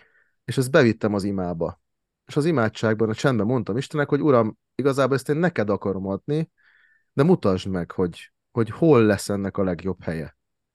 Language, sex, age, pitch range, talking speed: Hungarian, male, 30-49, 100-120 Hz, 175 wpm